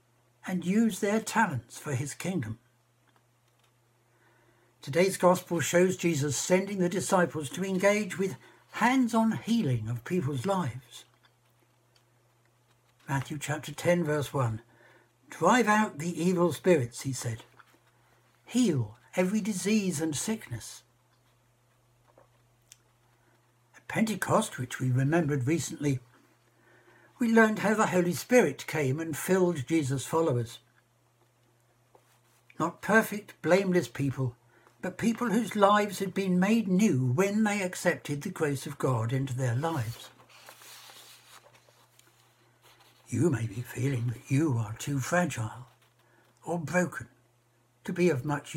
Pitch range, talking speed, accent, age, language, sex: 120-180 Hz, 115 wpm, British, 60-79, English, male